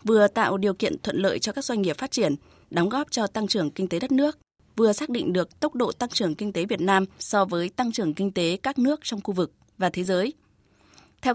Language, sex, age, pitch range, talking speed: Vietnamese, female, 20-39, 185-245 Hz, 255 wpm